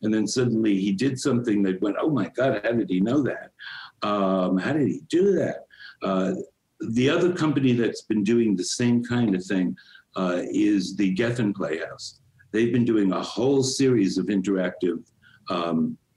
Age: 60-79